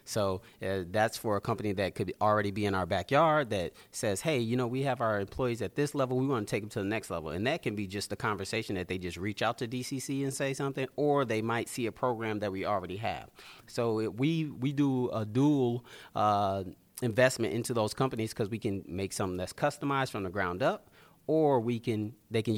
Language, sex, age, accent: English, male, 30-49, American